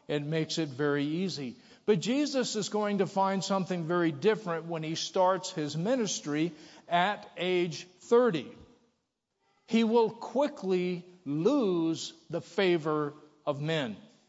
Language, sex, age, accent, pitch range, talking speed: English, male, 50-69, American, 160-215 Hz, 125 wpm